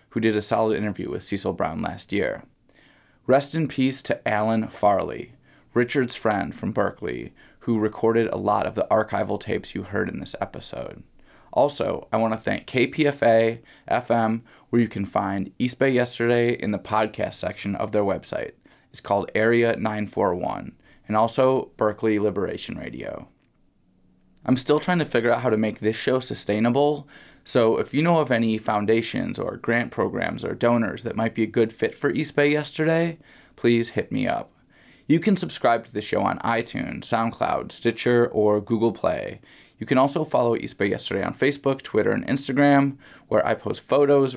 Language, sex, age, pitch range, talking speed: English, male, 20-39, 110-130 Hz, 175 wpm